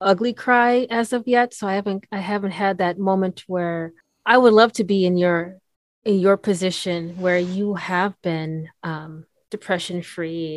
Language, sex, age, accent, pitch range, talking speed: English, female, 30-49, American, 170-210 Hz, 175 wpm